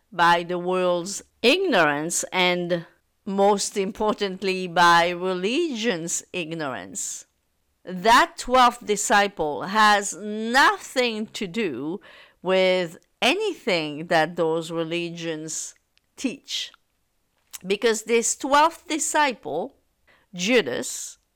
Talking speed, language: 80 wpm, English